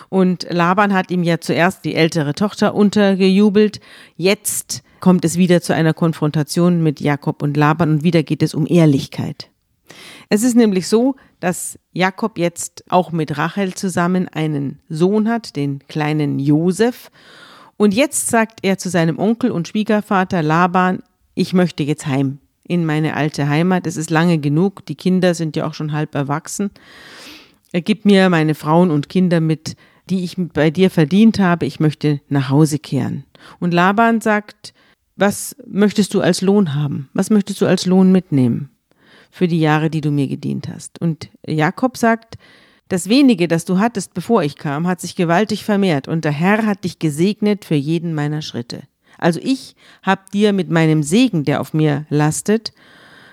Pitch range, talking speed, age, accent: 155-195 Hz, 170 wpm, 40-59, German